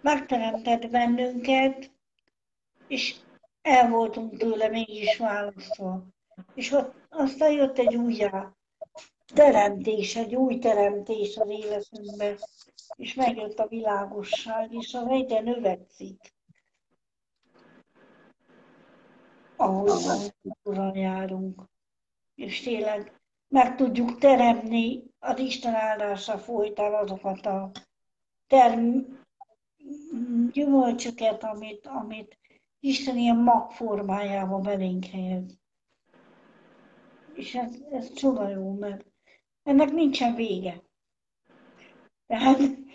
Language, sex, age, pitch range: Hungarian, female, 60-79, 210-265 Hz